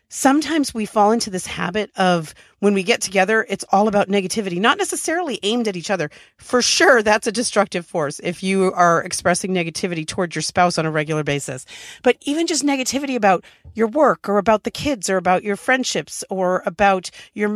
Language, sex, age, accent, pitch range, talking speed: English, female, 40-59, American, 170-220 Hz, 195 wpm